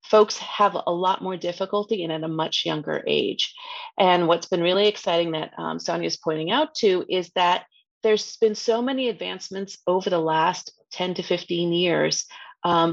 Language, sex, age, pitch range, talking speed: English, female, 30-49, 165-215 Hz, 175 wpm